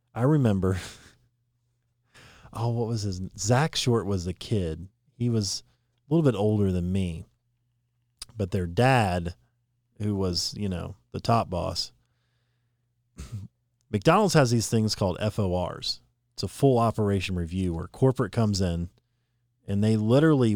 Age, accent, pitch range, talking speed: 40-59, American, 100-125 Hz, 135 wpm